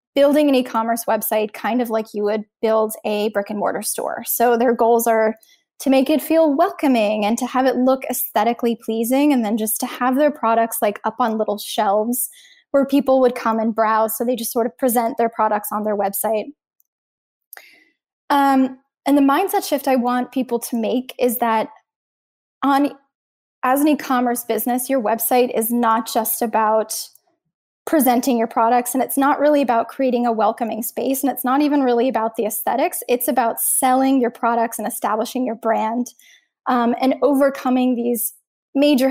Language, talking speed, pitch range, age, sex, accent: English, 175 wpm, 230-275 Hz, 10-29, female, American